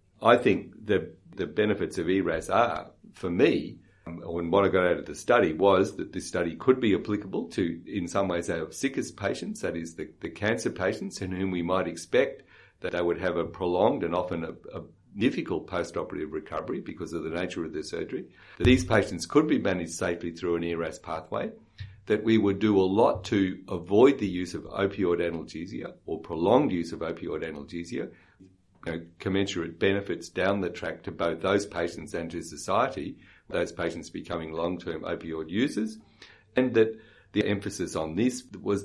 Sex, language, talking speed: male, English, 185 wpm